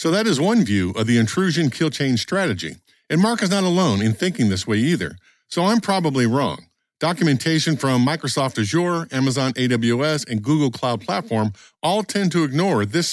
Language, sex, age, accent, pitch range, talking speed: English, male, 50-69, American, 120-175 Hz, 185 wpm